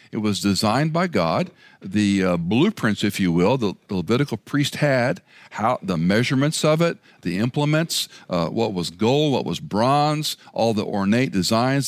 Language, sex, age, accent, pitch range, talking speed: English, male, 60-79, American, 100-145 Hz, 165 wpm